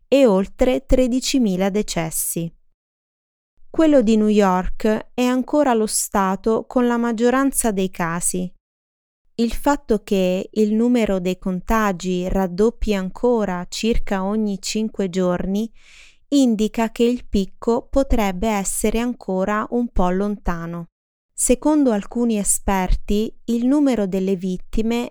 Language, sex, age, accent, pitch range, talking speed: Italian, female, 20-39, native, 190-240 Hz, 110 wpm